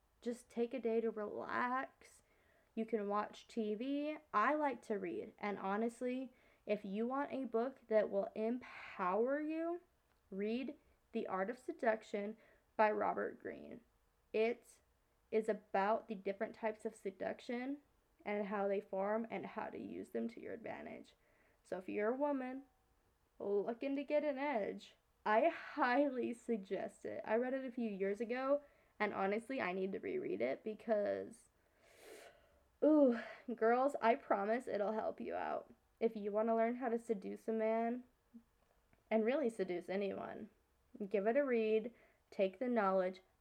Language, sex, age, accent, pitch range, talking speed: English, female, 20-39, American, 210-260 Hz, 155 wpm